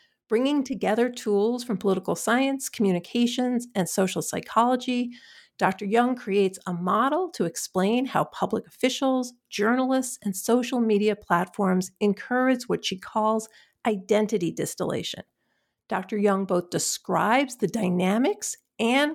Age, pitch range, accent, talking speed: 50-69, 195-245 Hz, American, 120 wpm